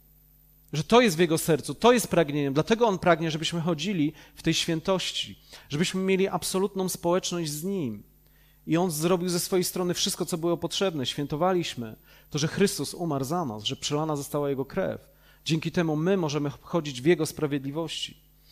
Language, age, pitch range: Polish, 40-59, 140-175 Hz